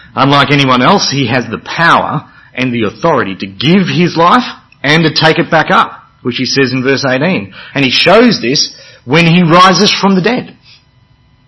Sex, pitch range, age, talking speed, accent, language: male, 110-145 Hz, 40-59, 190 wpm, Australian, English